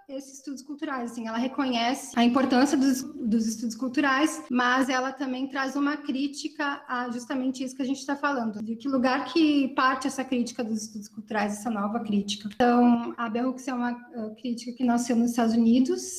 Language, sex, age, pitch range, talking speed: Portuguese, female, 20-39, 235-290 Hz, 195 wpm